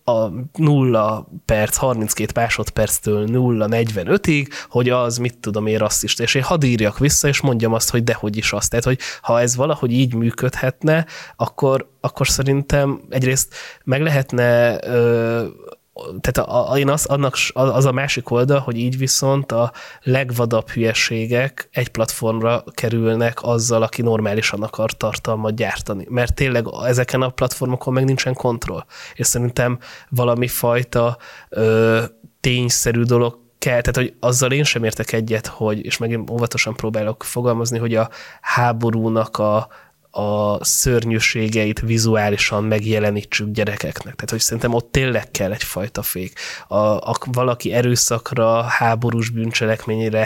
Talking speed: 135 wpm